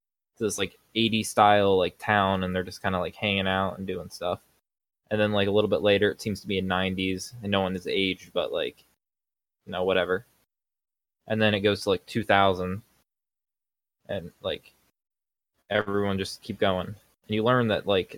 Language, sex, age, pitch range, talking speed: English, male, 20-39, 95-110 Hz, 195 wpm